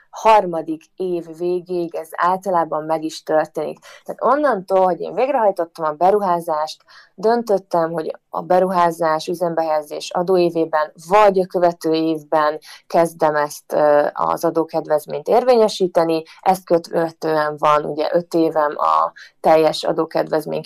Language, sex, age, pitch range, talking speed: Hungarian, female, 30-49, 155-185 Hz, 115 wpm